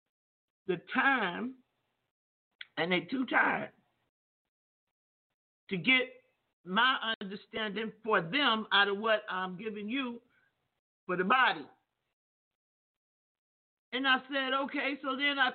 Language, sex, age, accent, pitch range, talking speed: English, male, 50-69, American, 205-270 Hz, 110 wpm